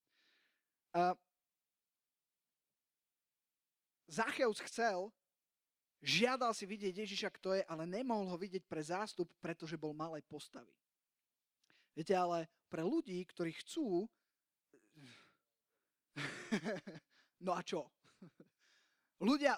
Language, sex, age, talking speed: Slovak, male, 20-39, 90 wpm